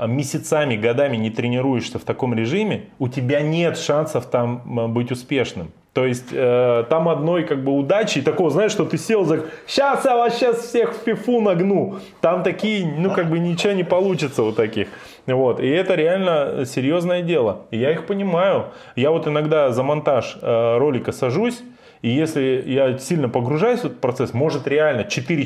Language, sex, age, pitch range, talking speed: Russian, male, 20-39, 125-175 Hz, 175 wpm